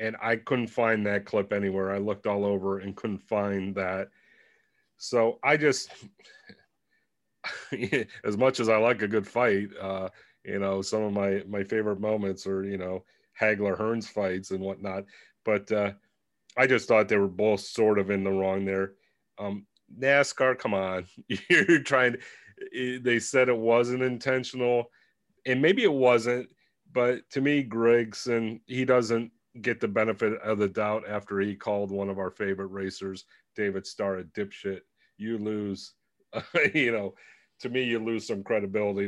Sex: male